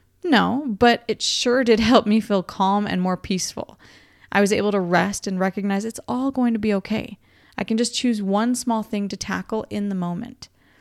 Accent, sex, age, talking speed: American, female, 20-39, 205 wpm